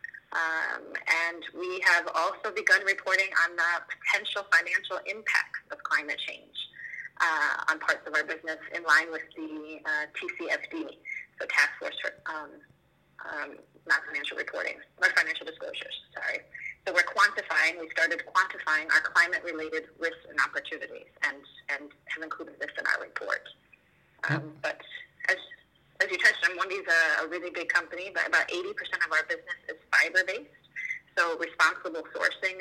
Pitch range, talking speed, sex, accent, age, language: 160-205 Hz, 145 wpm, female, American, 30-49, English